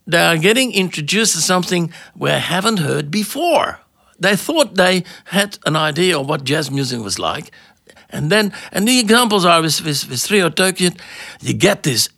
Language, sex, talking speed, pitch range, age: Finnish, male, 175 wpm, 150-200 Hz, 60-79